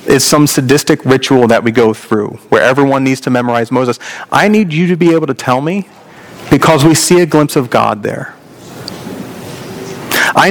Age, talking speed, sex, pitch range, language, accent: 40-59, 185 wpm, male, 145-185 Hz, English, American